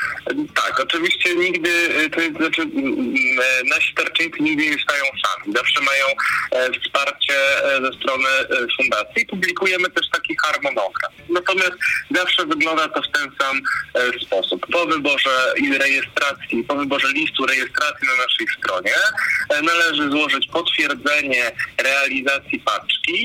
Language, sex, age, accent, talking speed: Polish, male, 40-59, native, 115 wpm